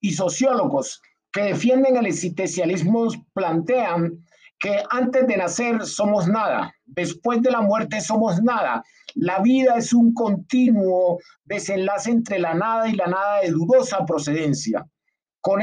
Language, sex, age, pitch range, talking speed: Spanish, male, 50-69, 175-235 Hz, 135 wpm